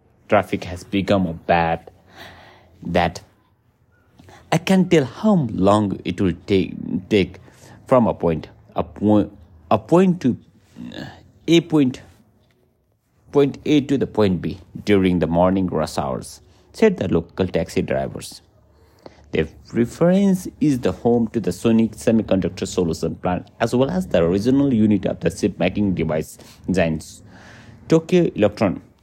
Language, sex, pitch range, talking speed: English, male, 90-120 Hz, 135 wpm